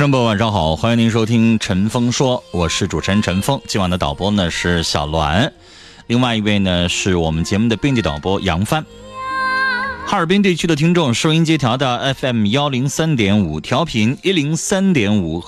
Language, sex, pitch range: Chinese, male, 95-140 Hz